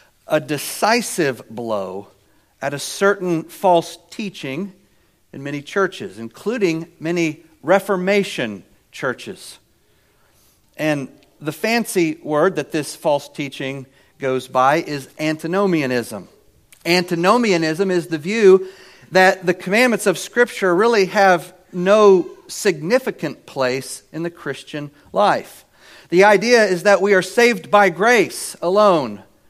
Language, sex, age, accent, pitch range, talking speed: English, male, 50-69, American, 135-190 Hz, 110 wpm